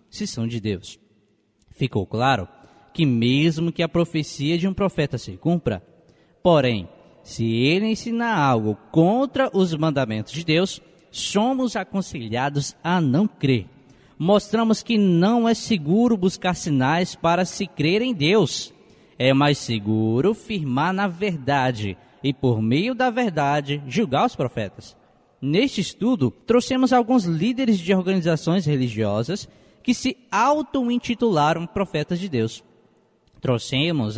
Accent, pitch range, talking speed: Brazilian, 135-205 Hz, 125 wpm